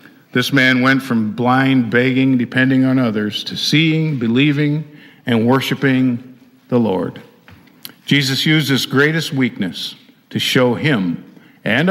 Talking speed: 125 wpm